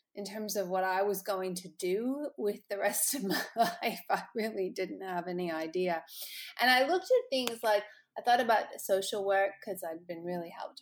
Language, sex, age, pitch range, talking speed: English, female, 30-49, 180-210 Hz, 205 wpm